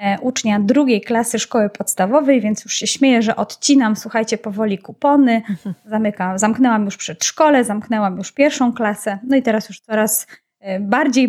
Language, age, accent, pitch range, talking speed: Polish, 20-39, native, 210-260 Hz, 145 wpm